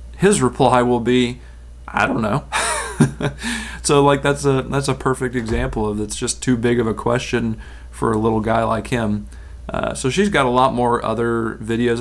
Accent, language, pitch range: American, English, 105-125 Hz